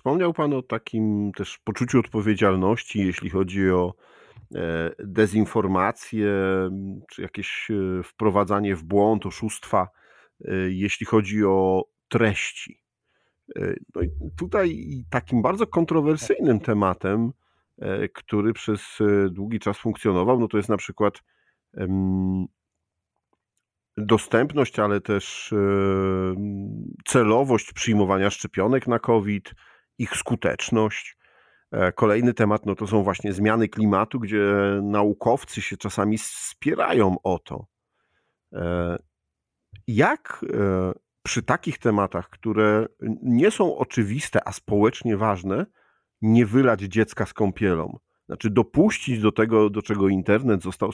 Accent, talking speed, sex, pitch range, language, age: native, 100 wpm, male, 95-115 Hz, Polish, 40-59